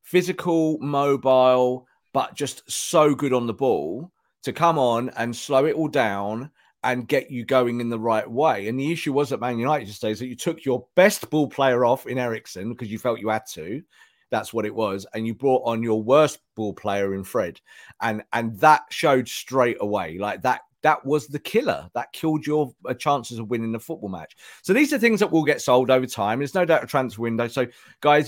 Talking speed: 220 wpm